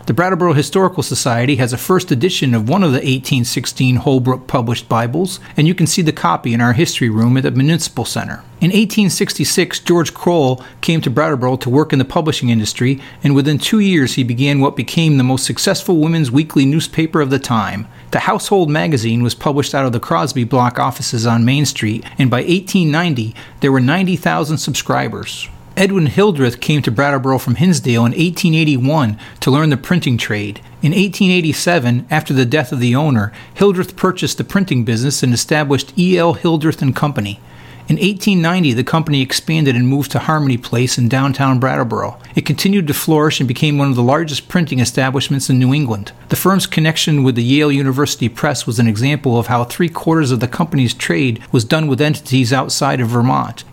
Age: 40-59